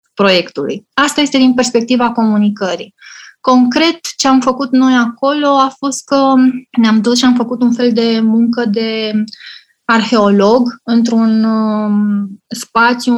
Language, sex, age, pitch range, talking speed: Romanian, female, 20-39, 200-240 Hz, 125 wpm